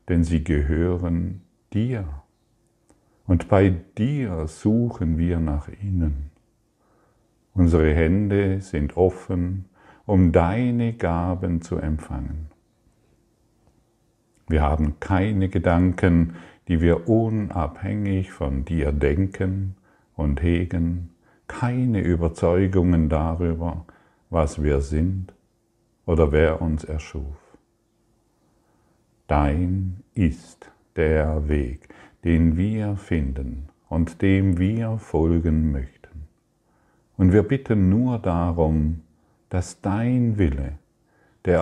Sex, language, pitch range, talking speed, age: male, German, 80-105 Hz, 90 wpm, 50-69